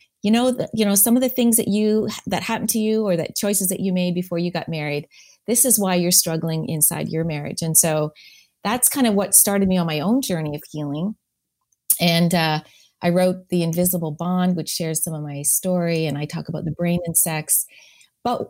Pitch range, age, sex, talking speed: 160-205 Hz, 30-49, female, 225 wpm